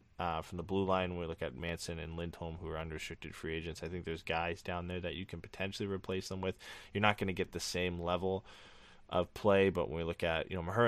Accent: American